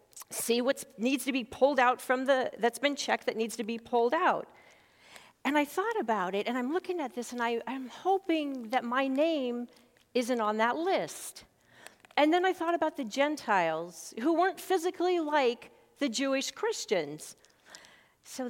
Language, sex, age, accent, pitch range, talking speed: English, female, 40-59, American, 230-300 Hz, 170 wpm